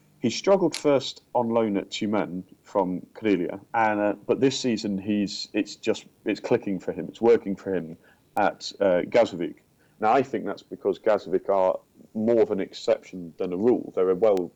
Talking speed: 185 wpm